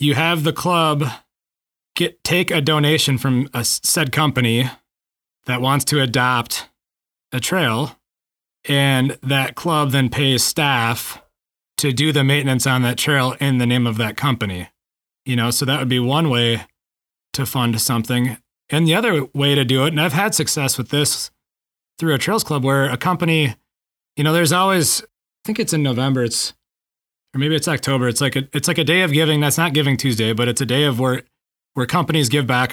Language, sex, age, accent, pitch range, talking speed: English, male, 30-49, American, 120-150 Hz, 195 wpm